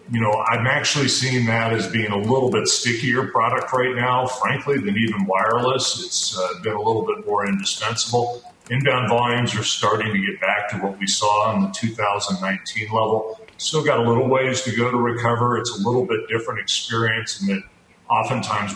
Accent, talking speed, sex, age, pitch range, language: American, 190 wpm, male, 40-59, 100-120 Hz, English